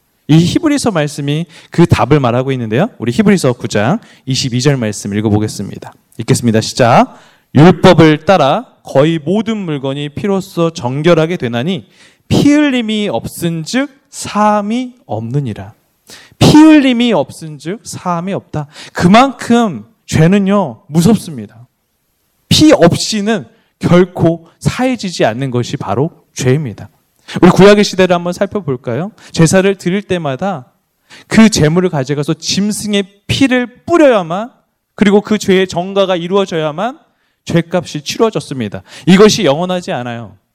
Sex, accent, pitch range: male, native, 140-200 Hz